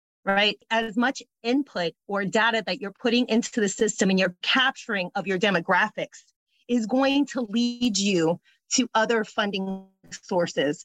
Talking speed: 150 wpm